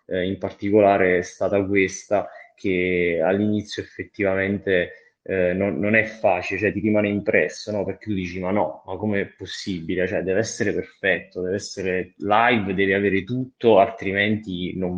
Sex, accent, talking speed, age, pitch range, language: male, native, 155 wpm, 20-39, 95-105 Hz, Italian